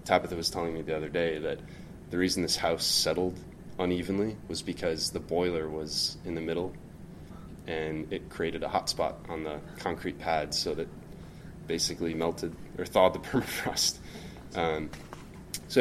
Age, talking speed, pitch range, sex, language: 20-39, 160 wpm, 80-95 Hz, male, English